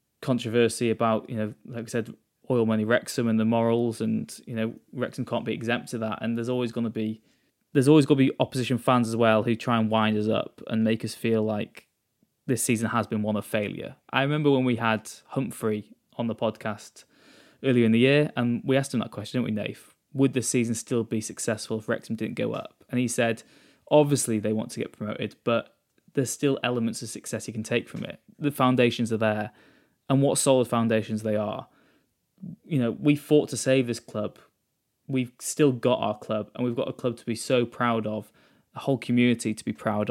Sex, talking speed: male, 220 wpm